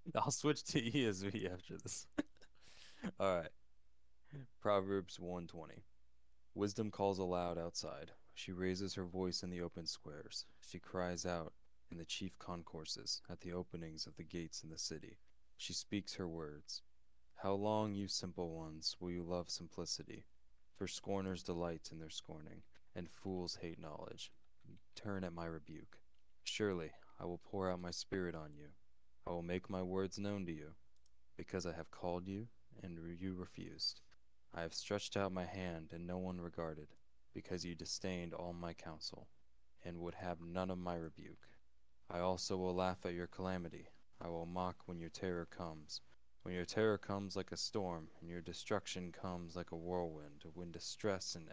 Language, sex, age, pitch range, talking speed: English, male, 20-39, 80-95 Hz, 165 wpm